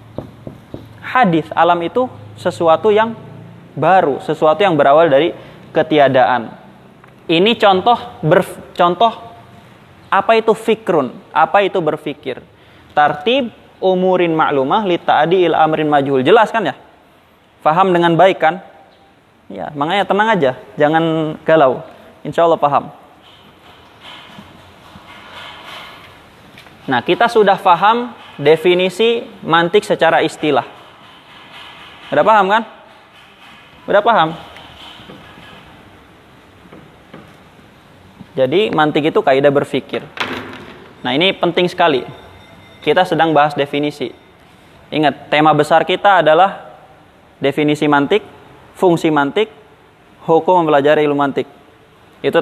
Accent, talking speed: native, 95 wpm